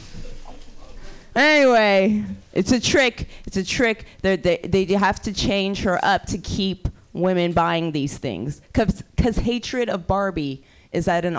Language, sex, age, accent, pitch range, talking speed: English, female, 20-39, American, 170-210 Hz, 150 wpm